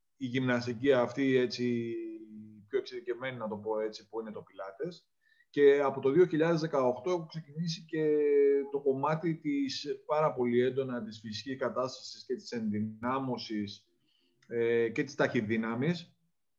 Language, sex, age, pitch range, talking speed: Greek, male, 30-49, 115-155 Hz, 135 wpm